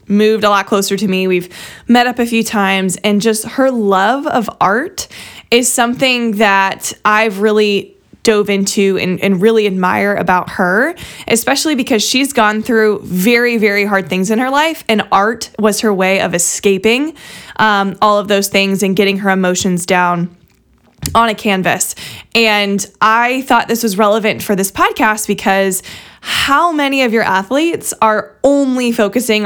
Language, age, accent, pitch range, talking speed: English, 20-39, American, 195-235 Hz, 165 wpm